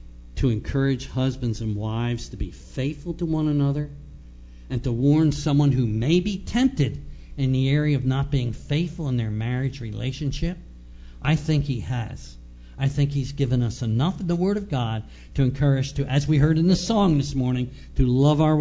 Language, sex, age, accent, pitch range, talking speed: English, male, 60-79, American, 120-160 Hz, 190 wpm